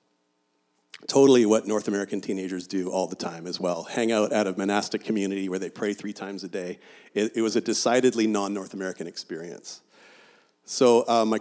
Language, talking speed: English, 185 wpm